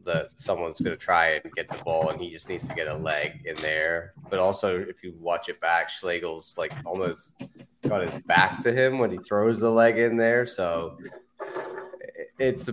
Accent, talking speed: American, 205 wpm